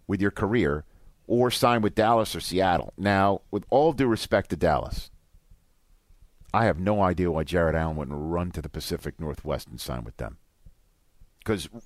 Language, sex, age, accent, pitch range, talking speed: English, male, 50-69, American, 85-120 Hz, 170 wpm